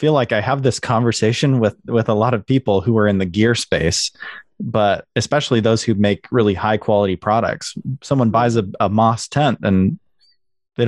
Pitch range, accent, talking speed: 95-120 Hz, American, 195 wpm